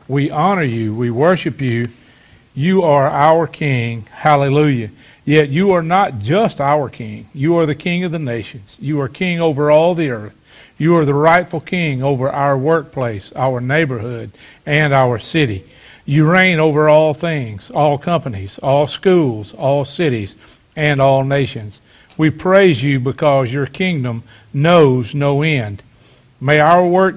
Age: 50-69